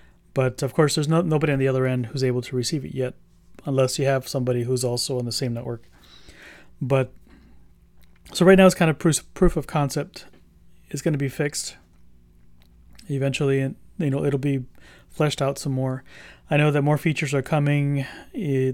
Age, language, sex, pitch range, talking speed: 30-49, English, male, 120-145 Hz, 190 wpm